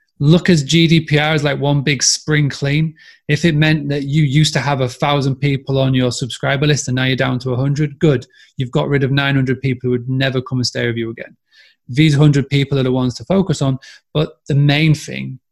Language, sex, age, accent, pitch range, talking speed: English, male, 30-49, British, 130-155 Hz, 230 wpm